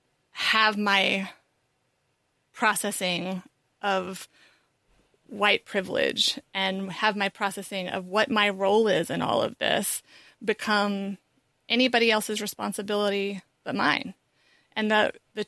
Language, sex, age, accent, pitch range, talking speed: English, female, 30-49, American, 200-235 Hz, 110 wpm